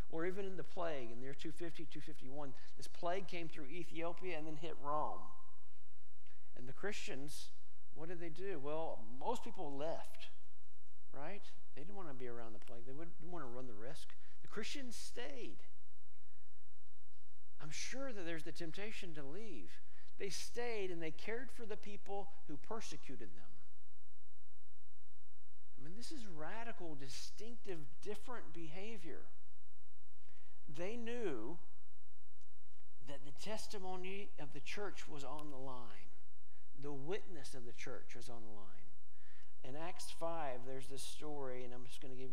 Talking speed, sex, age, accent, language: 155 wpm, male, 50-69, American, English